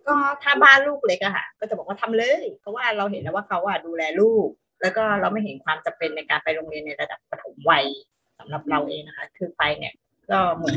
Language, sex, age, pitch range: Thai, female, 20-39, 195-245 Hz